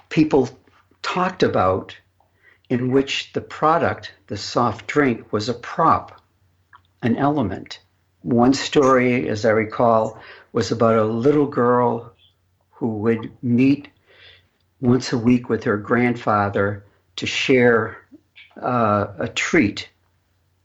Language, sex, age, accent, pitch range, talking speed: English, male, 60-79, American, 100-125 Hz, 115 wpm